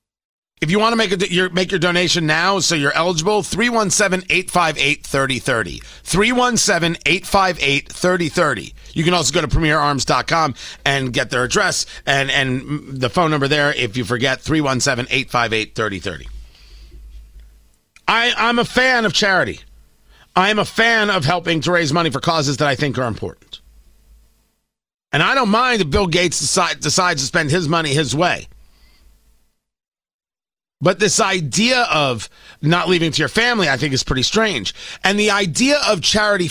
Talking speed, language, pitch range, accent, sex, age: 145 wpm, English, 135-205 Hz, American, male, 50-69